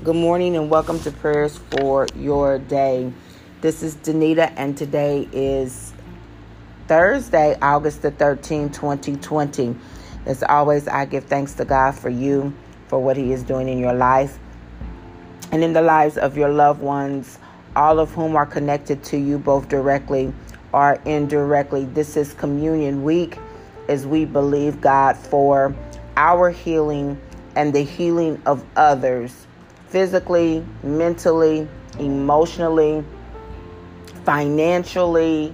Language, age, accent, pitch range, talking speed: English, 40-59, American, 135-165 Hz, 130 wpm